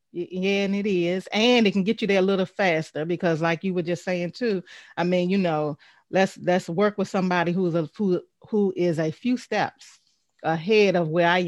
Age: 30-49